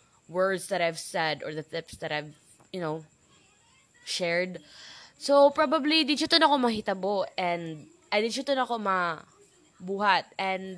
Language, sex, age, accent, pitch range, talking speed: Filipino, female, 20-39, native, 175-250 Hz, 115 wpm